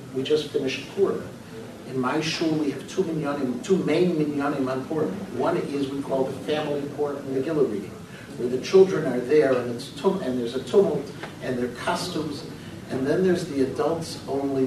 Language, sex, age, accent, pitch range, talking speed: English, male, 60-79, American, 130-160 Hz, 180 wpm